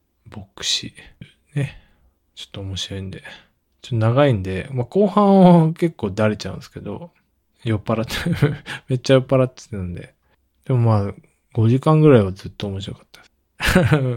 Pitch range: 100-135 Hz